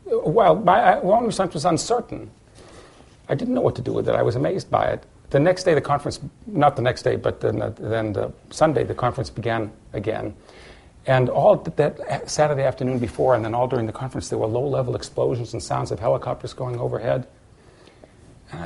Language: English